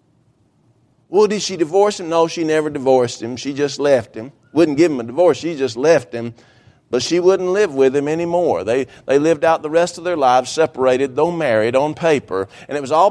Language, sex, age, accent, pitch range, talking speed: English, male, 50-69, American, 125-175 Hz, 220 wpm